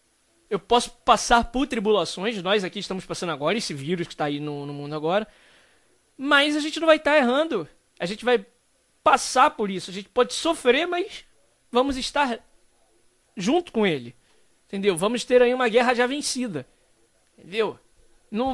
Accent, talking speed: Brazilian, 170 wpm